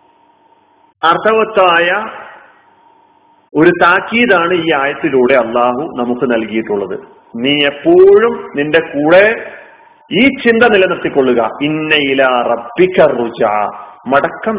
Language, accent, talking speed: Malayalam, native, 60 wpm